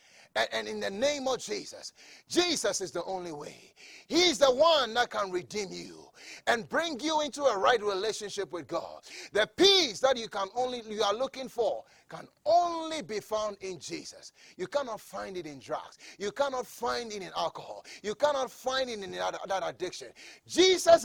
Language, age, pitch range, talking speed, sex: English, 30-49, 160-240 Hz, 180 wpm, male